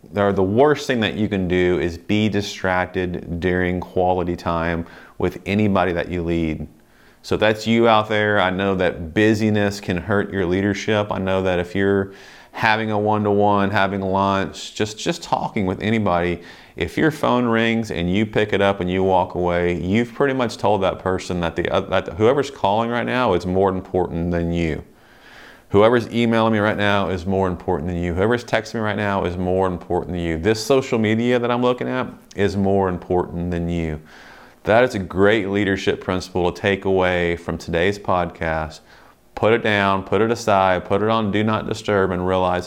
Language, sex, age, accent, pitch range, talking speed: English, male, 30-49, American, 90-105 Hz, 190 wpm